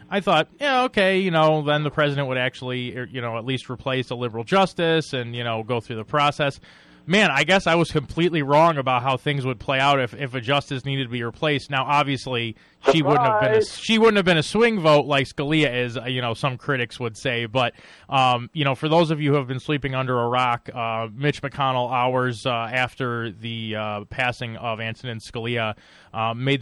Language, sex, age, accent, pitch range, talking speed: English, male, 20-39, American, 120-145 Hz, 225 wpm